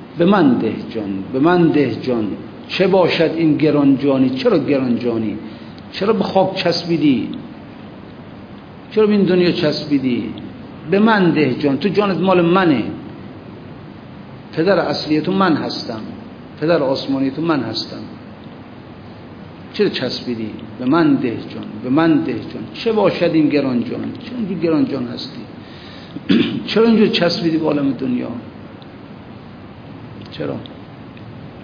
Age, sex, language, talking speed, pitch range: 50-69, male, Persian, 110 wpm, 125-180 Hz